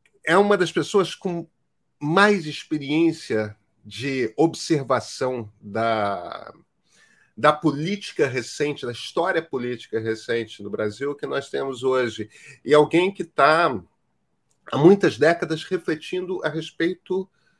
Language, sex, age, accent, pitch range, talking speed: Portuguese, male, 40-59, Brazilian, 120-195 Hz, 115 wpm